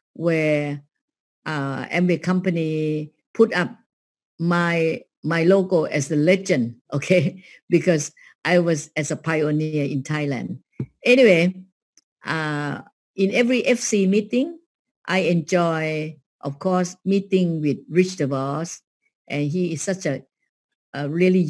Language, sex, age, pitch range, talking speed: Vietnamese, female, 60-79, 145-185 Hz, 115 wpm